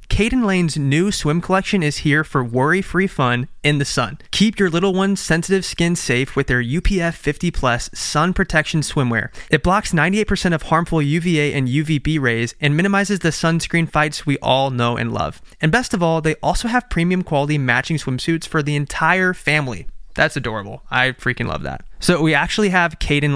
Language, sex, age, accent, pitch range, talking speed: English, male, 20-39, American, 130-170 Hz, 190 wpm